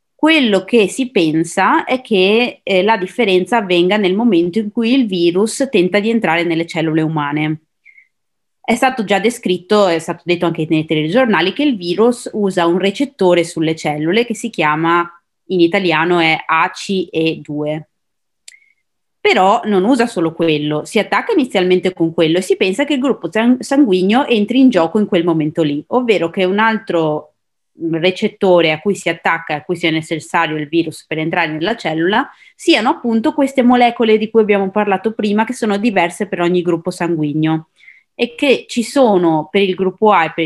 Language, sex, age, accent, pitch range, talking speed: Italian, female, 30-49, native, 165-225 Hz, 175 wpm